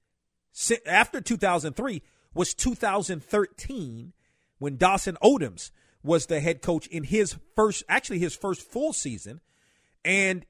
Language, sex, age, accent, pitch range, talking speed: English, male, 40-59, American, 145-185 Hz, 115 wpm